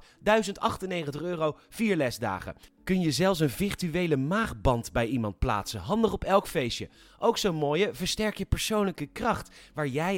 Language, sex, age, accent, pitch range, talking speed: Dutch, male, 30-49, Dutch, 135-190 Hz, 155 wpm